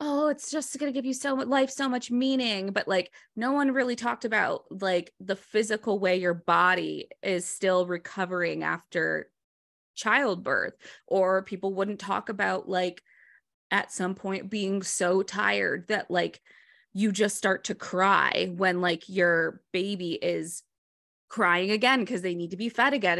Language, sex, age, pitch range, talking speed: English, female, 20-39, 175-215 Hz, 165 wpm